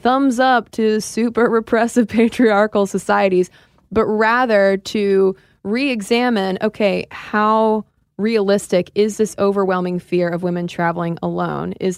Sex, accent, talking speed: female, American, 115 wpm